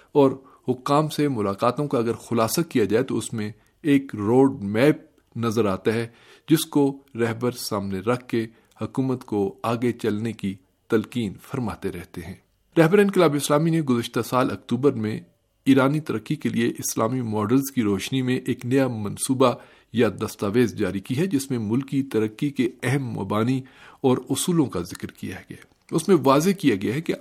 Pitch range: 110-140 Hz